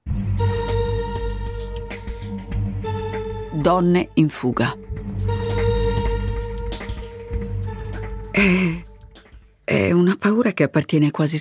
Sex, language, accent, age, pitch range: female, Italian, native, 50-69, 125-155 Hz